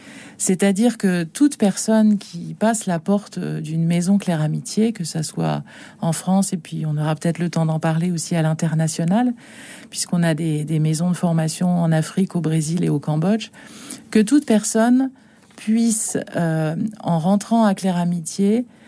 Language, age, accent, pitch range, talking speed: French, 40-59, French, 170-215 Hz, 170 wpm